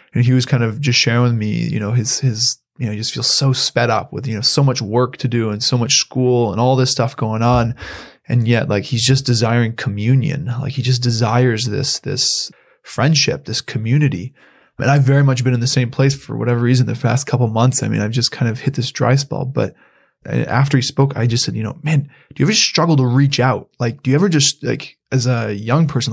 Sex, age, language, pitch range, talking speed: male, 20-39, English, 120-140 Hz, 255 wpm